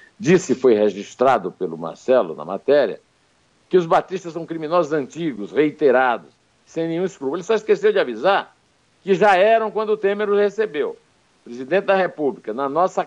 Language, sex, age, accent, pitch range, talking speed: Portuguese, male, 60-79, Brazilian, 135-205 Hz, 160 wpm